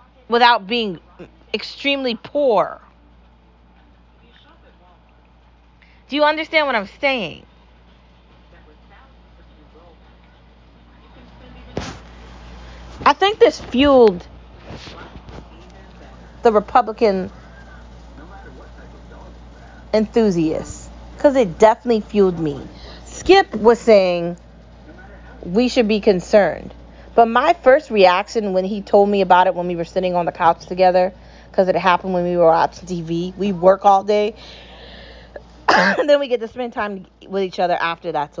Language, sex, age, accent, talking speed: English, female, 30-49, American, 110 wpm